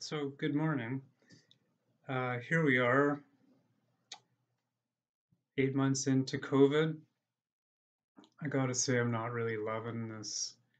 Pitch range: 120-140 Hz